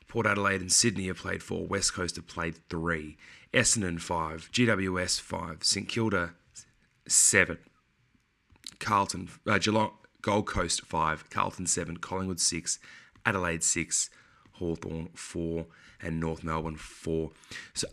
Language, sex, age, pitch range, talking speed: English, male, 20-39, 85-100 Hz, 125 wpm